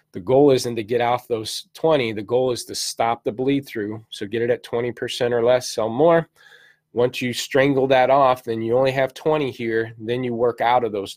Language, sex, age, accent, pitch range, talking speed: English, male, 20-39, American, 110-130 Hz, 225 wpm